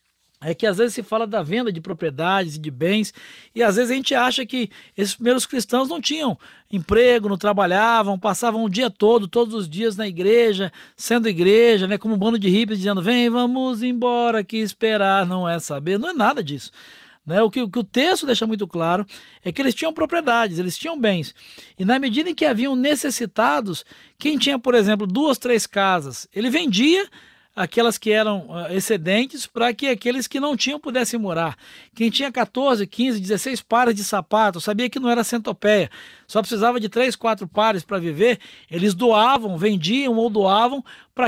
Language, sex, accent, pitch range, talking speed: Portuguese, male, Brazilian, 195-240 Hz, 190 wpm